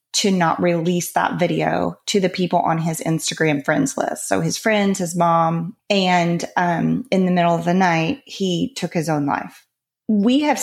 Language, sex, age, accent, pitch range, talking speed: English, female, 30-49, American, 175-210 Hz, 185 wpm